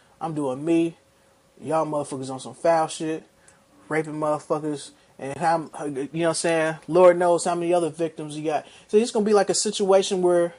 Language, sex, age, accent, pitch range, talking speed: English, male, 20-39, American, 150-175 Hz, 195 wpm